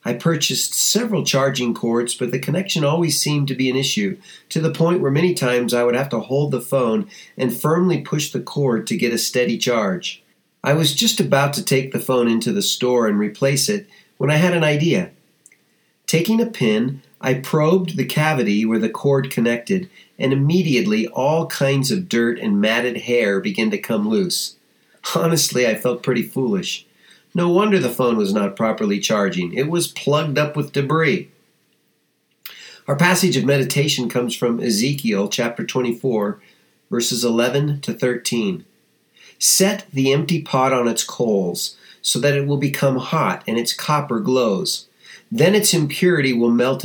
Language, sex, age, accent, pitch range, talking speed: English, male, 40-59, American, 125-180 Hz, 170 wpm